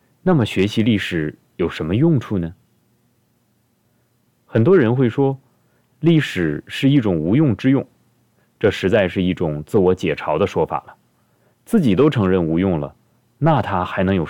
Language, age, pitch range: Chinese, 30-49, 85-125 Hz